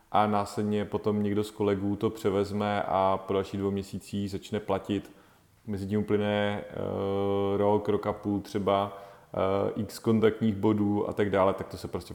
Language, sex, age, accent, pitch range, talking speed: Czech, male, 30-49, native, 95-105 Hz, 165 wpm